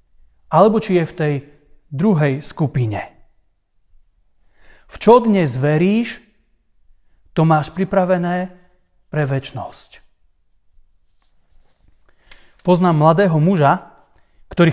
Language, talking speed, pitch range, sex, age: Slovak, 80 wpm, 145-195 Hz, male, 40-59